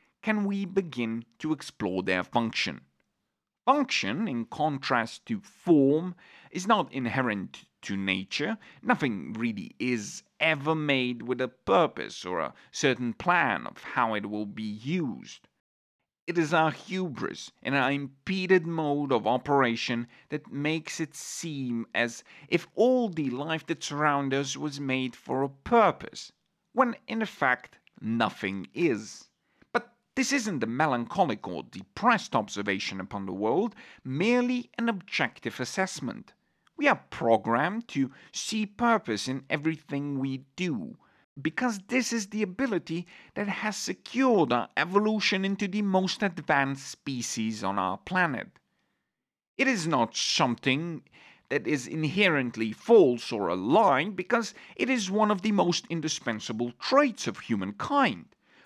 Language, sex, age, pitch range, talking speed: English, male, 40-59, 125-205 Hz, 135 wpm